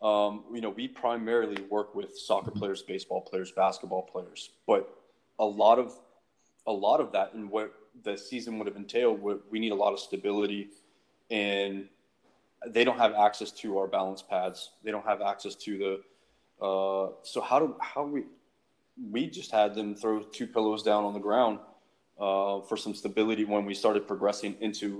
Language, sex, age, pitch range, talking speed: English, male, 20-39, 100-110 Hz, 180 wpm